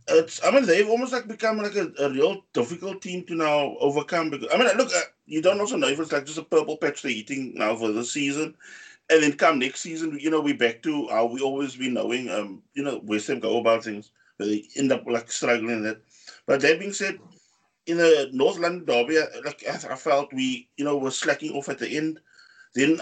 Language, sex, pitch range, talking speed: English, male, 130-175 Hz, 240 wpm